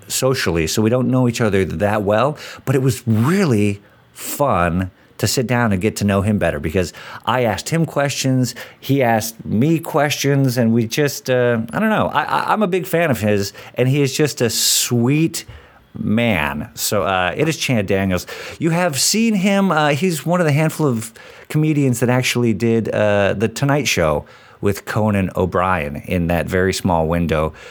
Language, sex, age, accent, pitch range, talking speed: English, male, 50-69, American, 100-140 Hz, 185 wpm